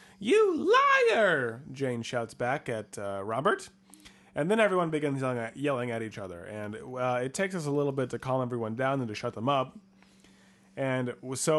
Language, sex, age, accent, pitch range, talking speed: English, male, 30-49, American, 120-170 Hz, 180 wpm